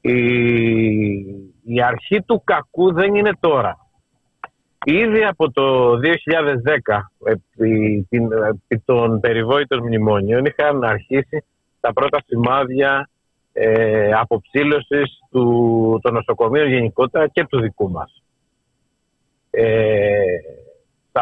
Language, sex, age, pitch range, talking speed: Greek, male, 50-69, 120-160 Hz, 90 wpm